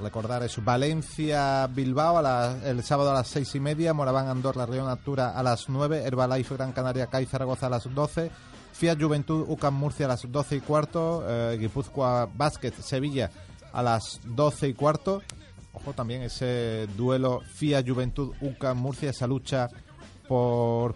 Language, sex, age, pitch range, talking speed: Spanish, male, 30-49, 125-145 Hz, 165 wpm